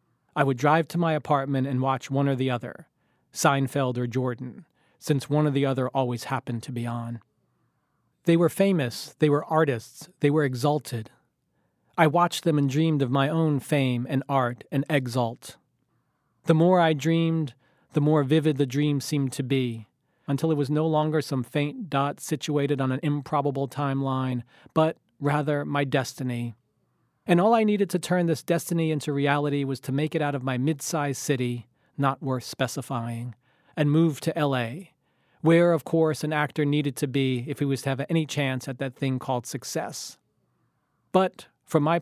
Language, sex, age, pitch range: English, male, 40-59, 135-155 Hz